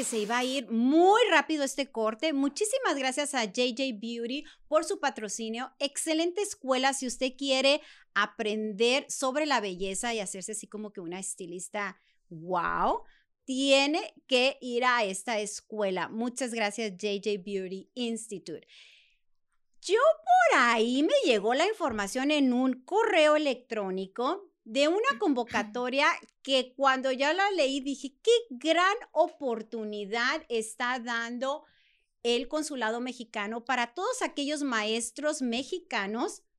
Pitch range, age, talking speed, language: 225-300 Hz, 30-49, 125 wpm, Spanish